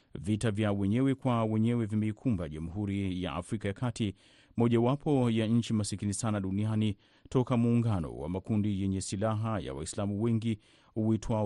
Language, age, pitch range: Swahili, 30-49, 100-115 Hz